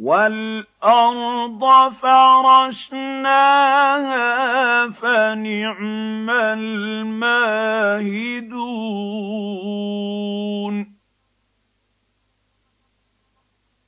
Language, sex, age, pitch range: Arabic, male, 50-69, 200-265 Hz